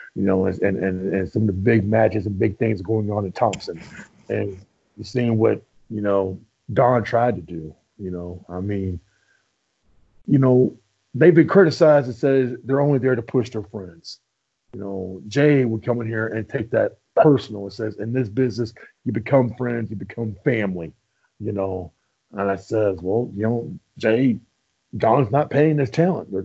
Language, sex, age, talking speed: English, male, 50-69, 185 wpm